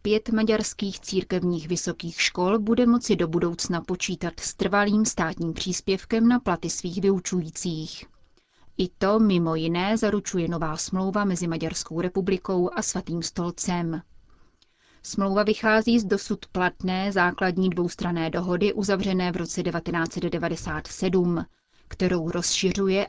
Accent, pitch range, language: native, 170-195 Hz, Czech